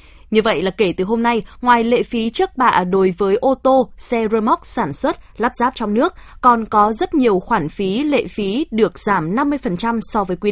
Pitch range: 200-260 Hz